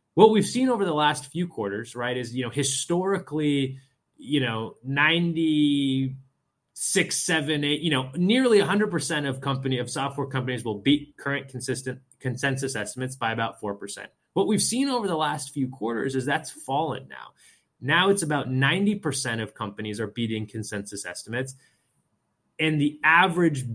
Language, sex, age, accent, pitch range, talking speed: English, male, 20-39, American, 120-160 Hz, 150 wpm